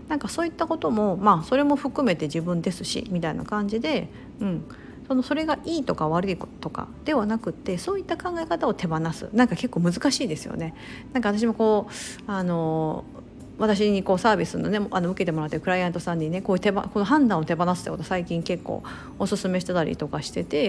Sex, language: female, Japanese